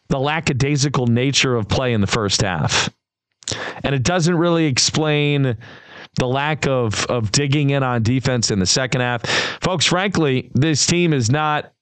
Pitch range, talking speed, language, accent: 115-145 Hz, 165 wpm, English, American